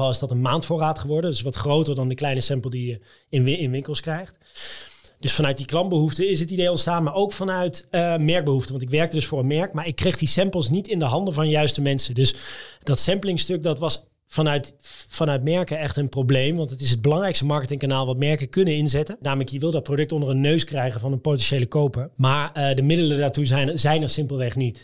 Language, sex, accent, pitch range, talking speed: Dutch, male, Dutch, 135-165 Hz, 225 wpm